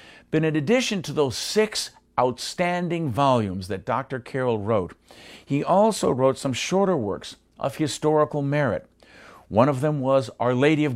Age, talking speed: 50-69, 155 wpm